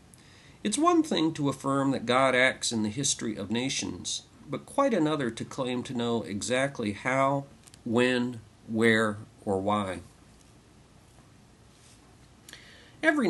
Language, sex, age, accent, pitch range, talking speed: English, male, 50-69, American, 110-135 Hz, 120 wpm